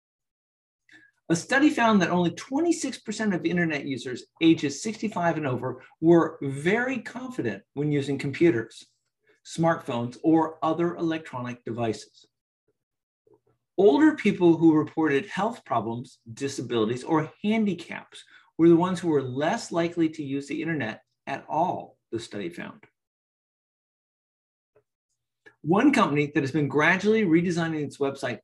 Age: 50-69